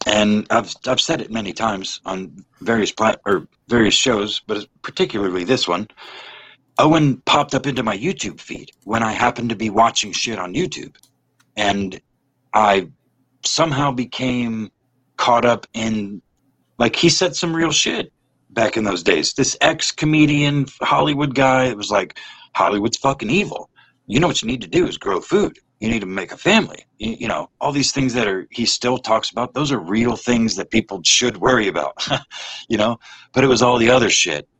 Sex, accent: male, American